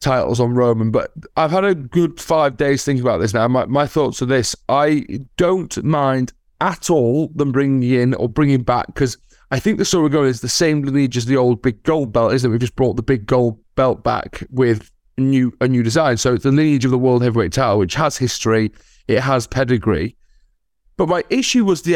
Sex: male